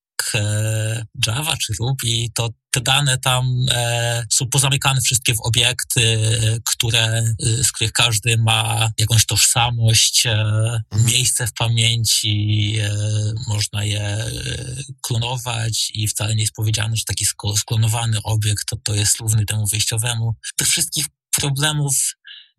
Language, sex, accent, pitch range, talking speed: Polish, male, native, 110-130 Hz, 110 wpm